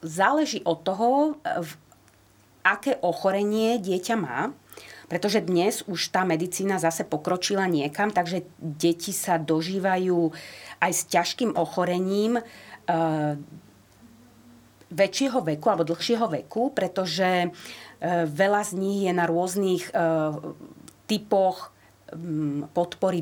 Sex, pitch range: female, 160-190 Hz